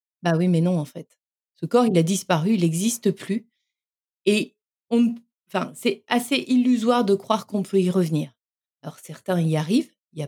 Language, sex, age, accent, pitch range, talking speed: French, female, 30-49, French, 180-235 Hz, 195 wpm